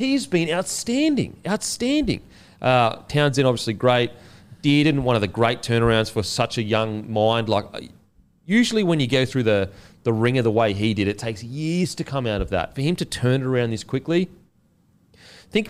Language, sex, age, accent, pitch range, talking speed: English, male, 30-49, Australian, 105-140 Hz, 190 wpm